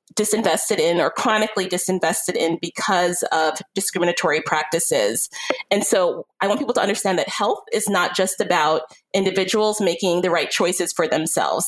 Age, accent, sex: 30-49, American, female